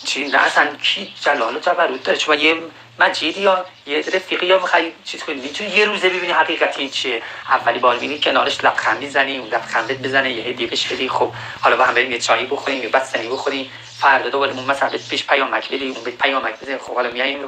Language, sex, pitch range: Persian, male, 130-170 Hz